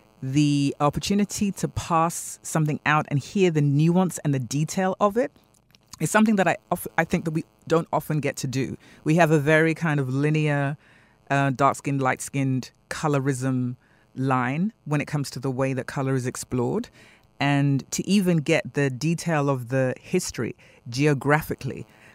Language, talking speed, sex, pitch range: English, 170 wpm, female, 130-155 Hz